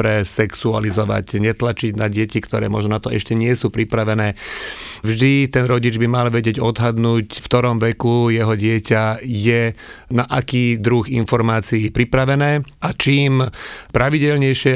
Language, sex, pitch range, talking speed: English, male, 110-130 Hz, 140 wpm